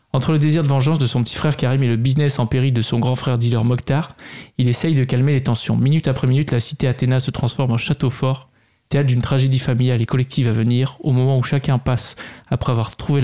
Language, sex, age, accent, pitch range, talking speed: French, male, 20-39, French, 120-145 Hz, 245 wpm